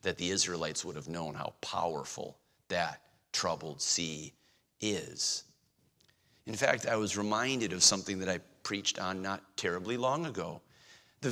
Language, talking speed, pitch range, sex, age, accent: English, 150 wpm, 115-175 Hz, male, 40-59, American